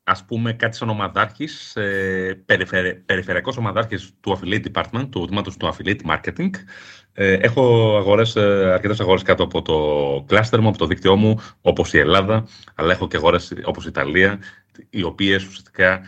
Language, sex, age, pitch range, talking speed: Greek, male, 30-49, 95-115 Hz, 155 wpm